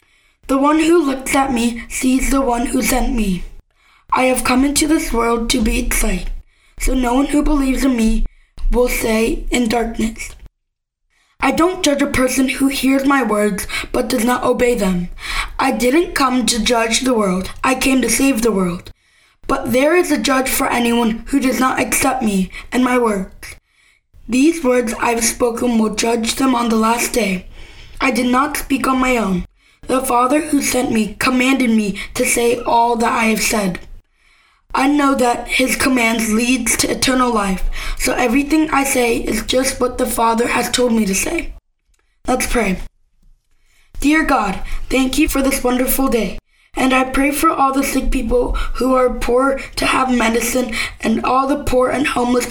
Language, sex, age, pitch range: Korean, female, 20-39, 235-270 Hz